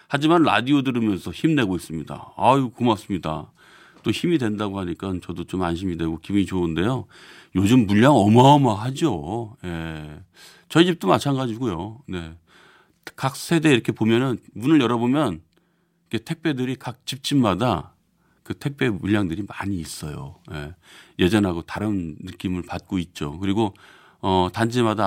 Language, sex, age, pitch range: Korean, male, 40-59, 90-135 Hz